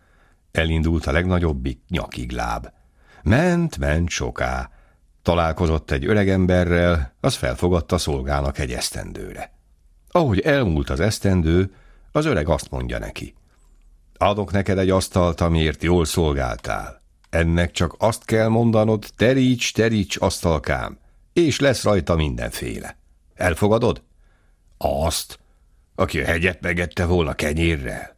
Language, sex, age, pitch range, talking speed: Hungarian, male, 60-79, 75-95 Hz, 110 wpm